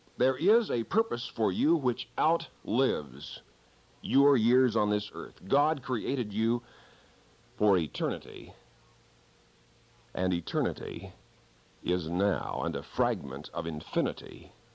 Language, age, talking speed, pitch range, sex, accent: English, 50-69, 110 wpm, 80-110 Hz, male, American